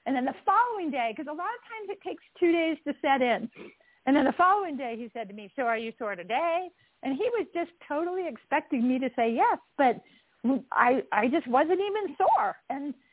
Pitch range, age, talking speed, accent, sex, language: 230-330 Hz, 50-69, 225 wpm, American, female, English